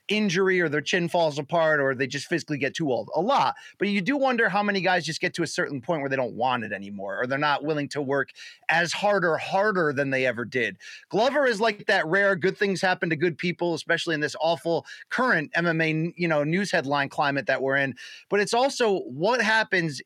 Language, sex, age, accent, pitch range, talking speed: English, male, 30-49, American, 155-215 Hz, 235 wpm